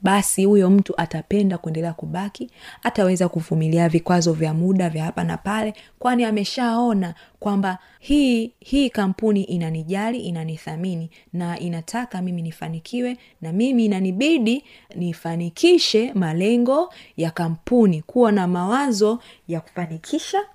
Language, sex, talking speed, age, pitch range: Swahili, female, 115 wpm, 30-49, 165-225 Hz